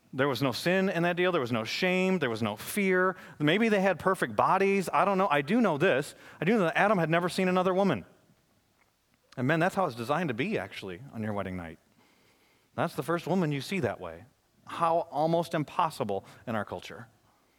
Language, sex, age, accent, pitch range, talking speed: English, male, 30-49, American, 150-210 Hz, 220 wpm